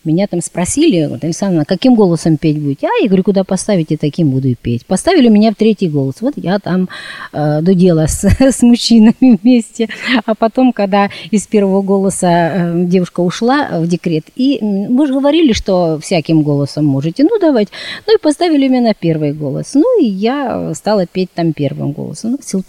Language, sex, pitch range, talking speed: Russian, female, 160-225 Hz, 195 wpm